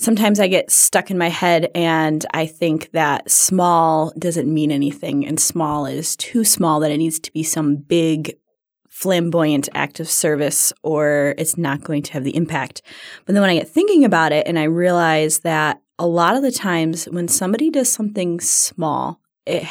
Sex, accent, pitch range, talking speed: female, American, 160-190 Hz, 190 wpm